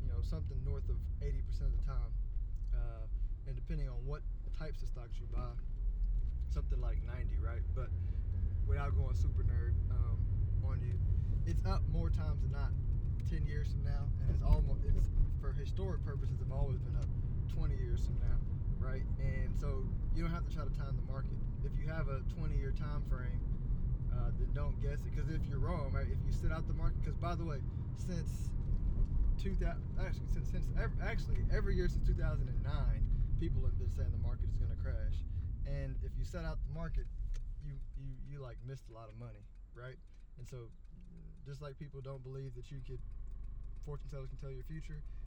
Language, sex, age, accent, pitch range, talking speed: English, male, 20-39, American, 90-135 Hz, 195 wpm